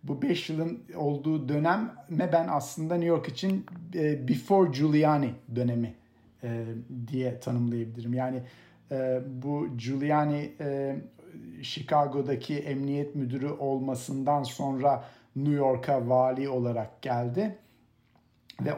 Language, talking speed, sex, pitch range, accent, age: Turkish, 95 wpm, male, 125-145 Hz, native, 50-69